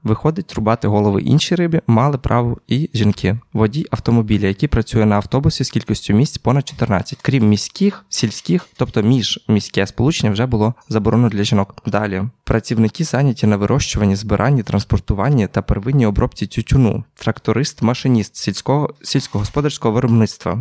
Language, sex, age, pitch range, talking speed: Ukrainian, male, 20-39, 105-130 Hz, 135 wpm